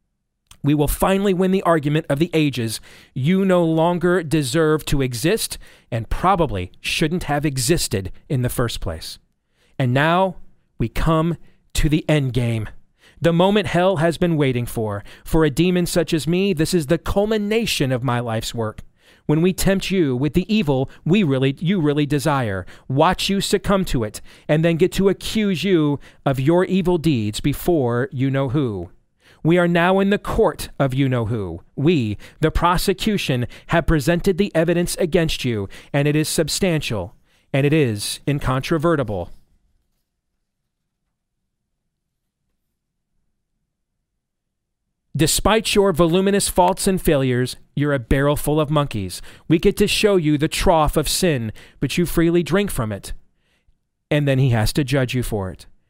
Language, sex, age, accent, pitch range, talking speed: English, male, 40-59, American, 125-175 Hz, 155 wpm